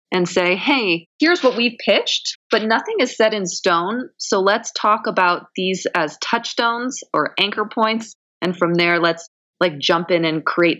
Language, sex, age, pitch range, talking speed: English, female, 20-39, 160-195 Hz, 185 wpm